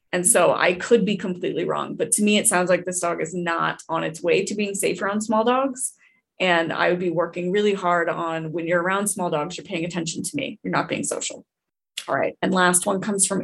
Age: 20-39